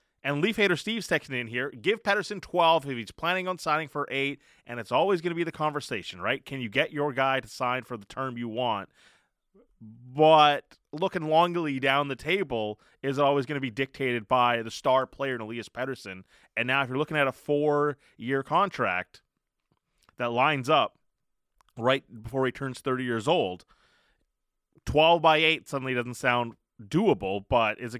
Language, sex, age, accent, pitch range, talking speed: English, male, 20-39, American, 120-150 Hz, 185 wpm